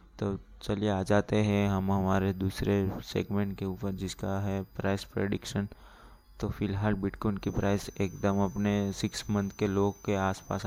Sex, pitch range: male, 95-105 Hz